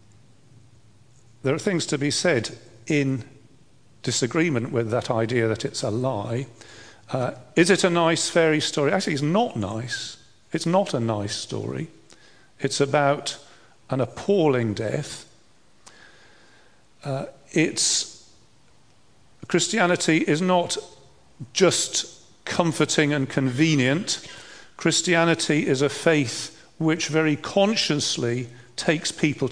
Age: 50-69